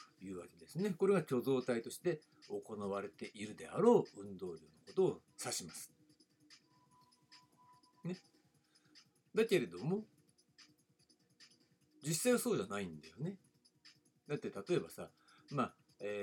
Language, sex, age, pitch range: Japanese, male, 60-79, 120-190 Hz